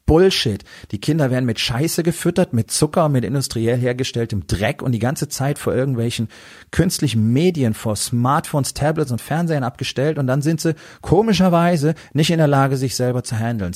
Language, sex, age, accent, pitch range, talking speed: German, male, 40-59, German, 110-150 Hz, 175 wpm